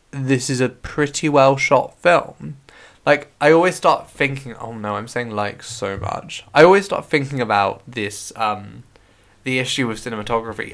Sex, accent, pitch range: male, British, 105-145 Hz